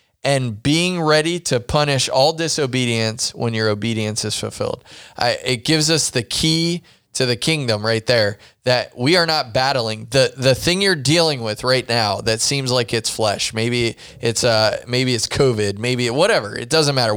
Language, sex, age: English, male, 20-39